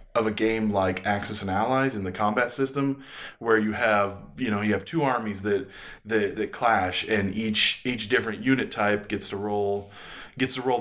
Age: 20-39